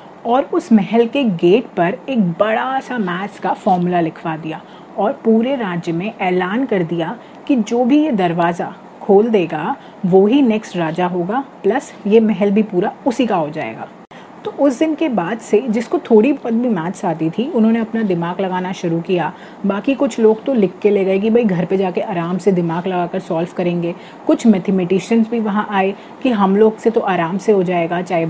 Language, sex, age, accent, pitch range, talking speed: Hindi, female, 30-49, native, 180-235 Hz, 205 wpm